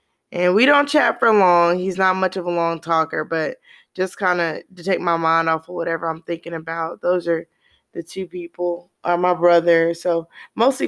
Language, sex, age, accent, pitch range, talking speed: English, female, 20-39, American, 165-190 Hz, 205 wpm